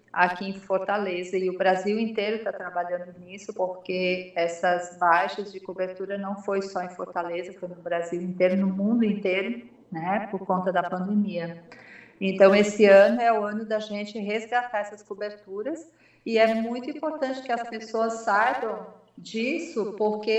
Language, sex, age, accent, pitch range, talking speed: Portuguese, female, 40-59, Brazilian, 190-220 Hz, 155 wpm